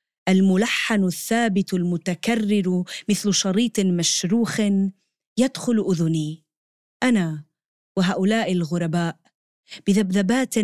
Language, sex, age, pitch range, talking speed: Arabic, female, 20-39, 175-225 Hz, 70 wpm